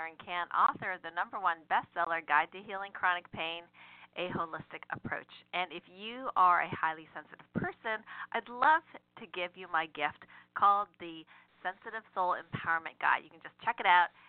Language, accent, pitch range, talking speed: English, American, 165-205 Hz, 175 wpm